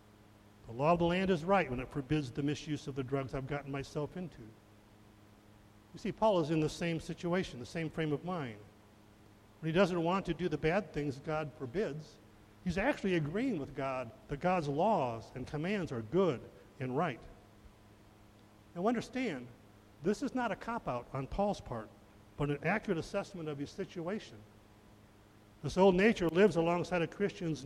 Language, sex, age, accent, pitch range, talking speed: English, male, 50-69, American, 105-175 Hz, 175 wpm